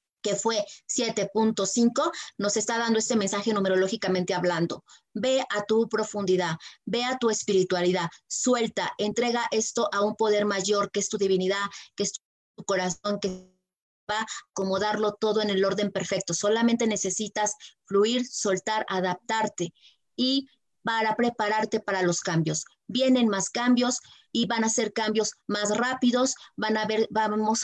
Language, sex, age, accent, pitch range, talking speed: Spanish, female, 30-49, Mexican, 200-245 Hz, 140 wpm